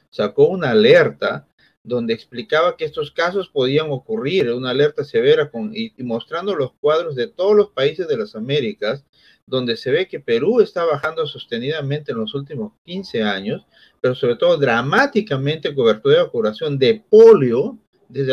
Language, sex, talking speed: Spanish, male, 160 wpm